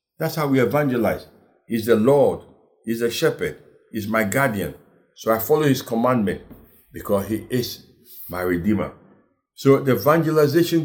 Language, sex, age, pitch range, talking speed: English, male, 60-79, 100-150 Hz, 145 wpm